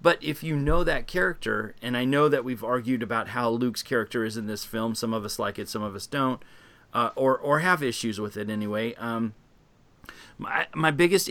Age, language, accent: 30-49, English, American